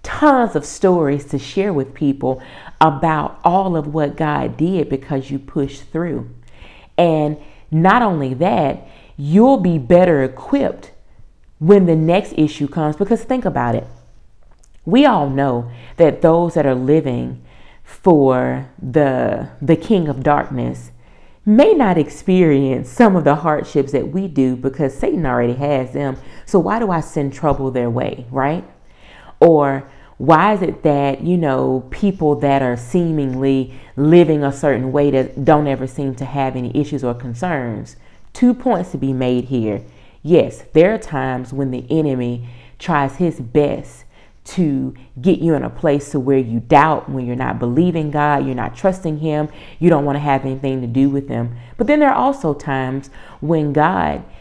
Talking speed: 165 wpm